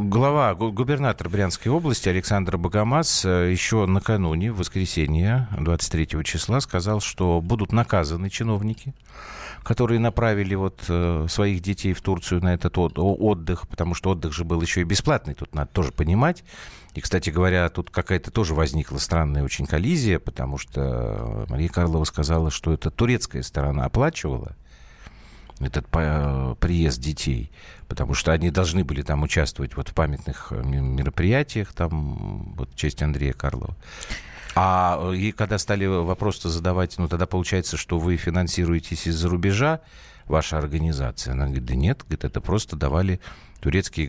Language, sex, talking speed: Russian, male, 135 wpm